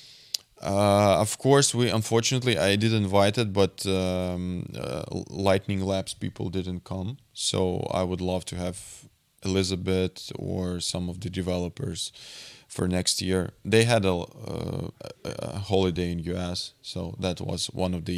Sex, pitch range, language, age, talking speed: male, 95-115 Hz, English, 20-39, 150 wpm